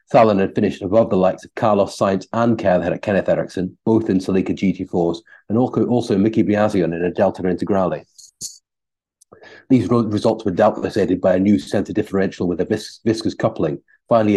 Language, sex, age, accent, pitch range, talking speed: English, male, 40-59, British, 90-110 Hz, 170 wpm